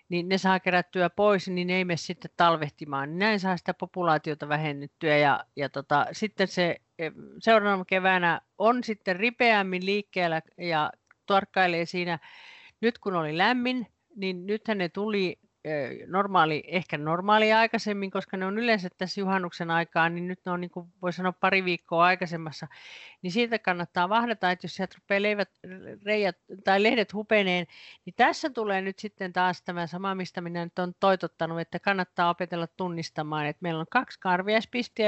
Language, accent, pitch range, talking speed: Finnish, native, 175-210 Hz, 155 wpm